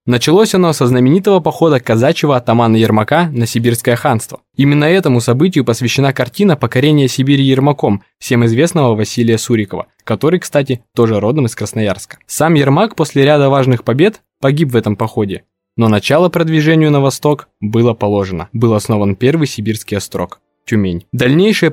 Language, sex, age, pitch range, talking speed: Russian, male, 20-39, 115-155 Hz, 145 wpm